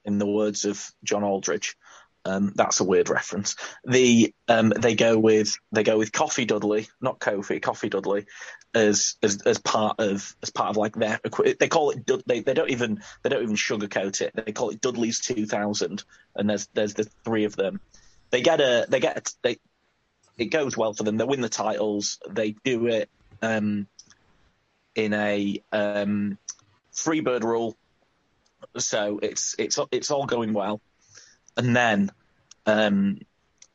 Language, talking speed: English, 170 wpm